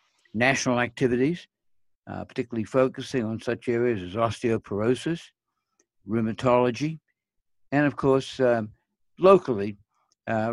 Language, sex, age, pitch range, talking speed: English, male, 60-79, 105-135 Hz, 95 wpm